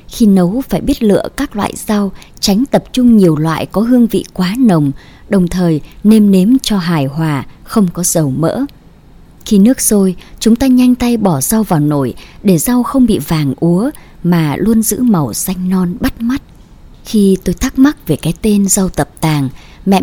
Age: 20-39